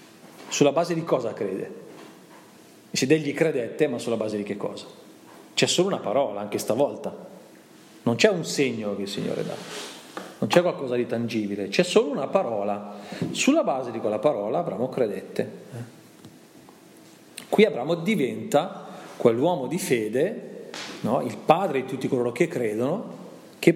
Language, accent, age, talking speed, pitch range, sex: Italian, native, 40-59, 150 wpm, 110-170 Hz, male